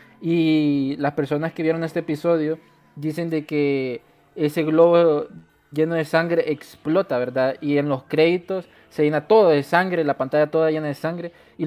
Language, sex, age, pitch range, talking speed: Spanish, male, 20-39, 140-165 Hz, 170 wpm